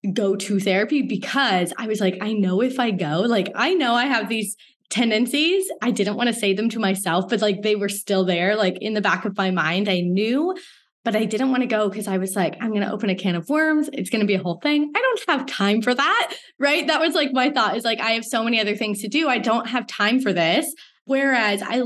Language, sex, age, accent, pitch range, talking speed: English, female, 20-39, American, 205-265 Hz, 265 wpm